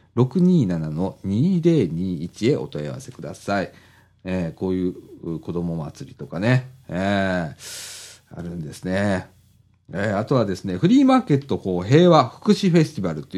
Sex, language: male, Japanese